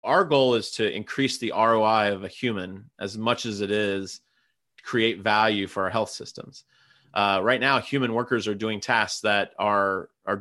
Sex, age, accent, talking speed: male, 30-49, American, 190 wpm